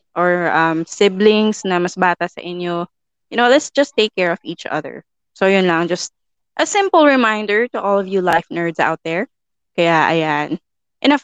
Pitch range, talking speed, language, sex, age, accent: 180-230 Hz, 185 wpm, English, female, 20-39, Filipino